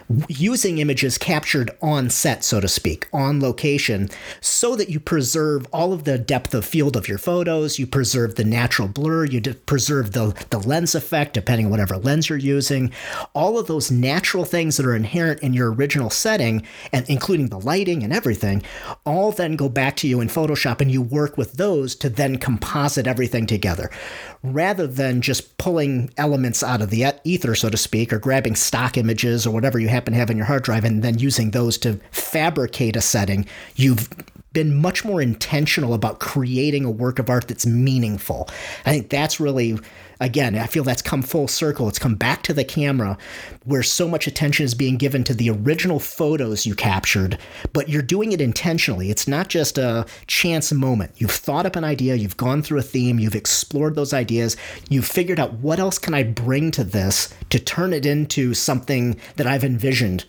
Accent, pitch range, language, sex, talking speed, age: American, 115-150 Hz, English, male, 195 wpm, 40-59